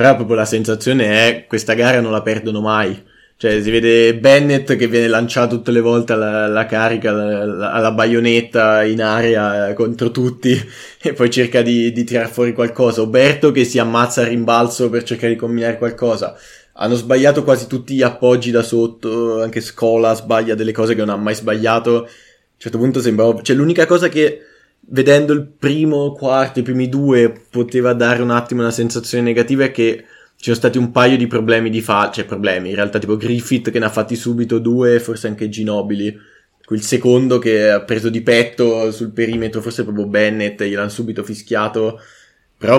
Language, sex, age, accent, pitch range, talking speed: Italian, male, 20-39, native, 110-125 Hz, 185 wpm